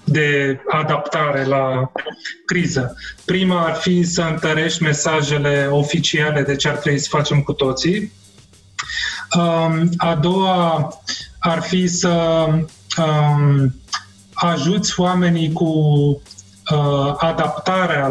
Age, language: 30-49, Romanian